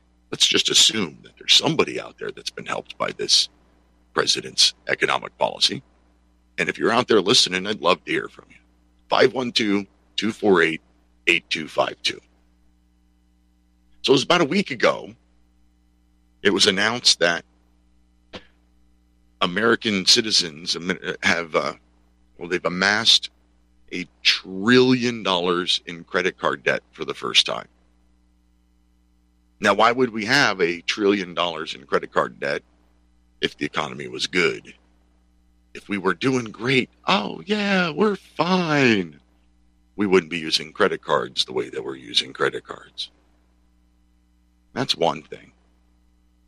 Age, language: 50-69, English